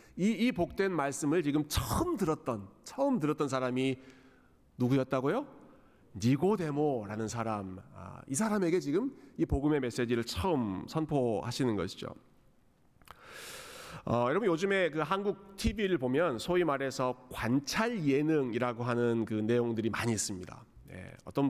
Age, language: 40-59, Korean